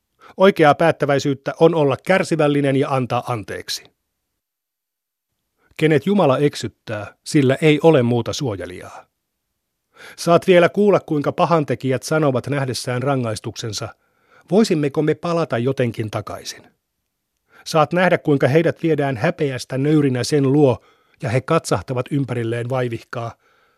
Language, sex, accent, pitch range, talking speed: Finnish, male, native, 120-155 Hz, 110 wpm